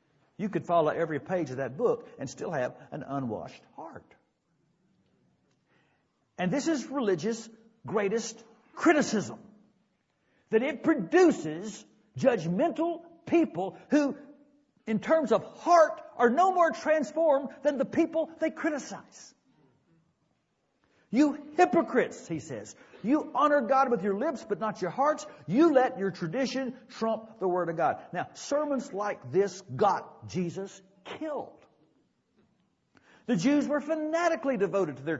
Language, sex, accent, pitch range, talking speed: English, male, American, 200-295 Hz, 130 wpm